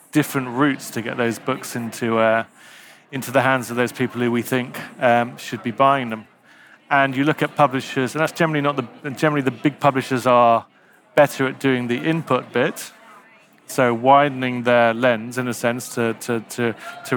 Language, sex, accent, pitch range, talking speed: Swedish, male, British, 115-130 Hz, 190 wpm